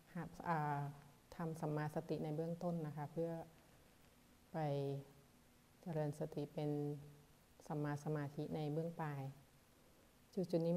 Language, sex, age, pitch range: Thai, female, 30-49, 150-185 Hz